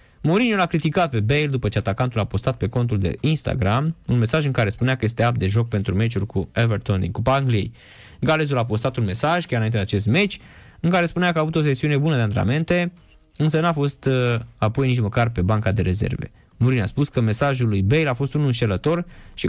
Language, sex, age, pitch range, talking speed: Romanian, male, 20-39, 105-150 Hz, 230 wpm